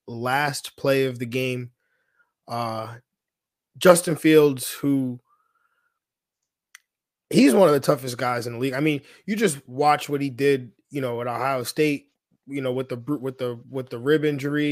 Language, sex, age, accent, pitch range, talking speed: English, male, 20-39, American, 120-140 Hz, 165 wpm